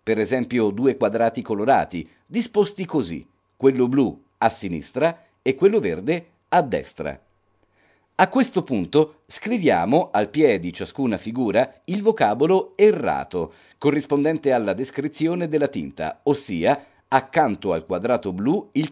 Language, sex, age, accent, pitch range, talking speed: Italian, male, 40-59, native, 140-205 Hz, 125 wpm